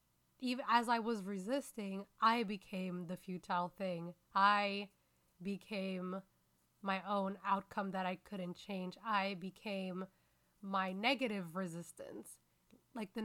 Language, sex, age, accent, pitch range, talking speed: English, female, 20-39, American, 180-215 Hz, 120 wpm